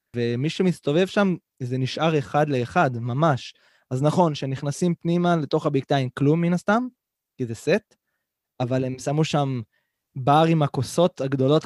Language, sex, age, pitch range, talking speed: Hebrew, male, 20-39, 125-155 Hz, 145 wpm